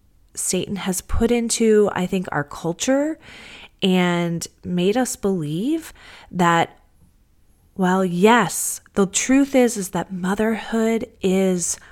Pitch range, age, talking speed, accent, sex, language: 155-185 Hz, 30-49, 110 wpm, American, female, English